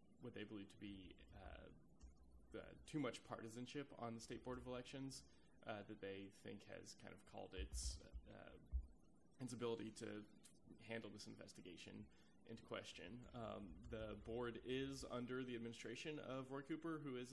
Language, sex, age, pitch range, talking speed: English, male, 20-39, 100-120 Hz, 155 wpm